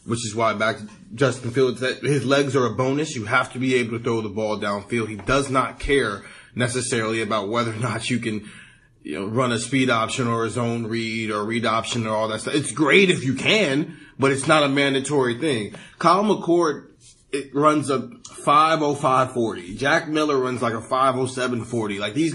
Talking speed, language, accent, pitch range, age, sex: 215 wpm, English, American, 120-155 Hz, 30-49, male